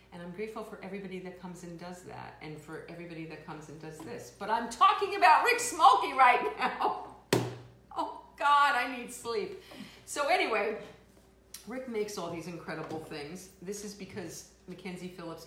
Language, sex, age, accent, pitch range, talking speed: English, female, 50-69, American, 145-195 Hz, 170 wpm